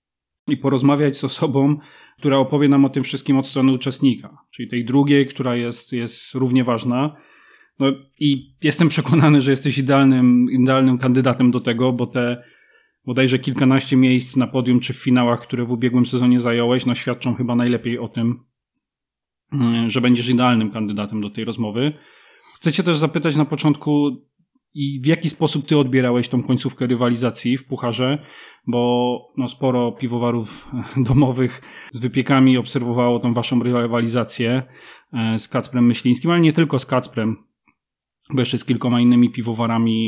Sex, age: male, 30-49